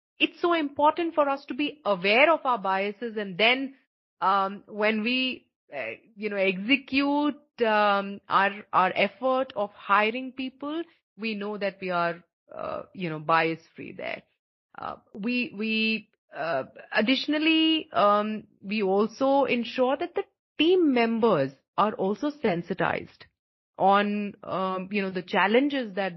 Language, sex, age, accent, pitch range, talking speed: English, female, 30-49, Indian, 195-275 Hz, 140 wpm